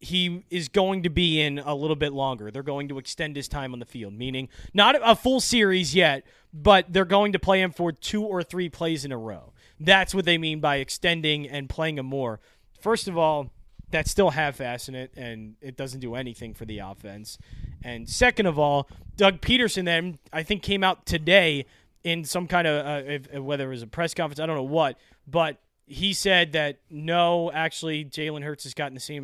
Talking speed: 220 wpm